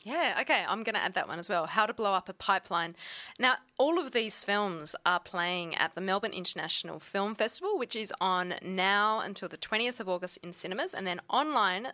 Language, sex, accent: English, female, Australian